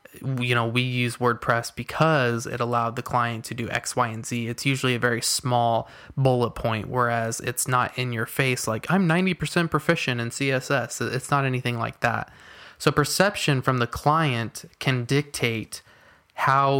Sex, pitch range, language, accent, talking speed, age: male, 120-140 Hz, English, American, 170 wpm, 20-39